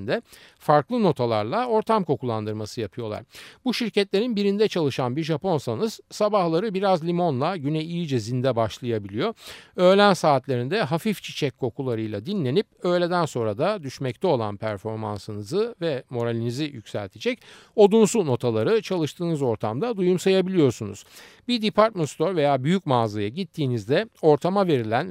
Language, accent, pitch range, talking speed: Turkish, native, 120-185 Hz, 110 wpm